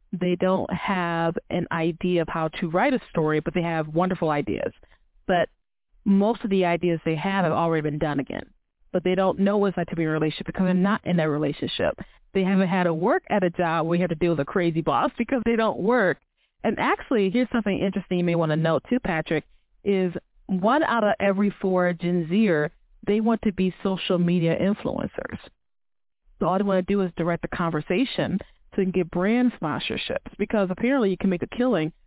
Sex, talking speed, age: female, 215 wpm, 30-49